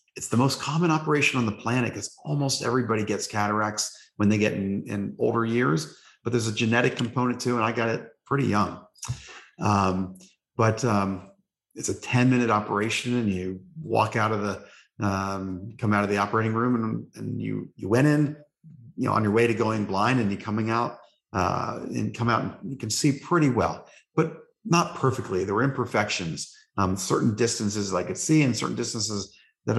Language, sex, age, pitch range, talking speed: English, male, 40-59, 100-125 Hz, 195 wpm